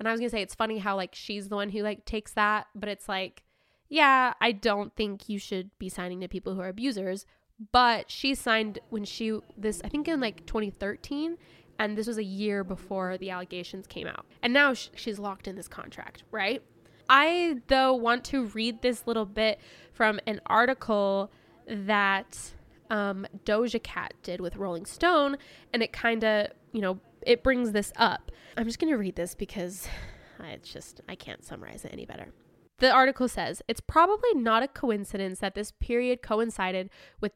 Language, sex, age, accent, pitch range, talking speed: English, female, 10-29, American, 195-240 Hz, 190 wpm